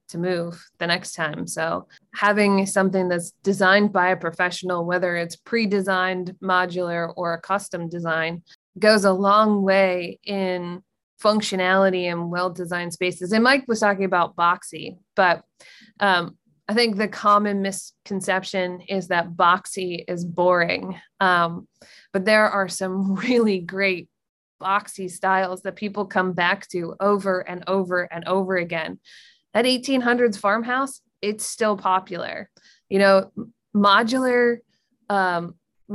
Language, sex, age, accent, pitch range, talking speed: English, female, 20-39, American, 180-210 Hz, 130 wpm